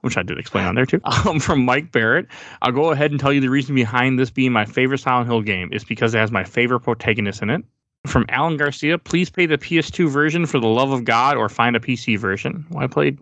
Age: 20-39